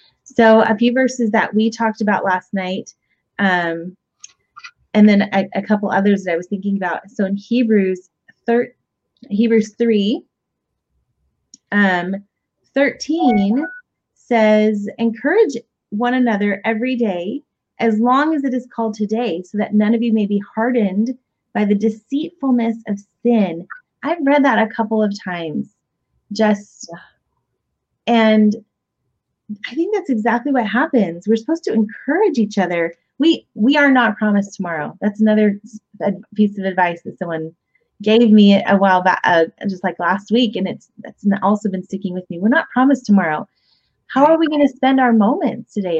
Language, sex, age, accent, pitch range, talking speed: English, female, 30-49, American, 200-245 Hz, 155 wpm